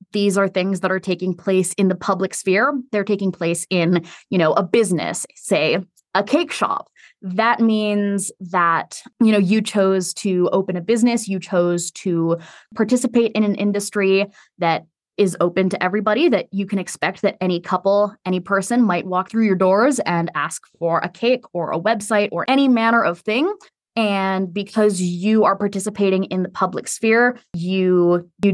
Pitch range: 180-220 Hz